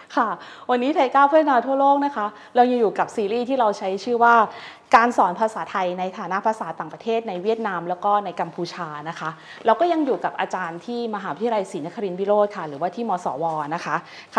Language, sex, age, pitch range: Thai, female, 20-39, 185-245 Hz